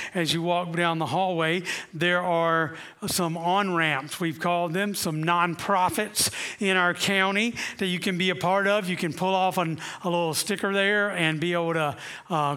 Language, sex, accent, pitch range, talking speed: English, male, American, 165-190 Hz, 185 wpm